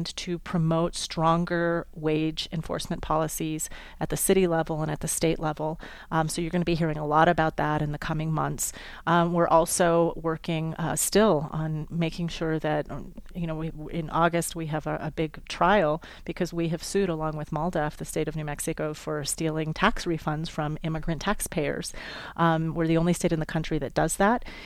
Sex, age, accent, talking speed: female, 30-49, American, 200 wpm